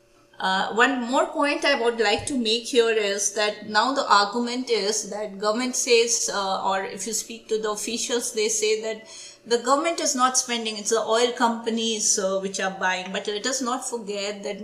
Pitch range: 195-225 Hz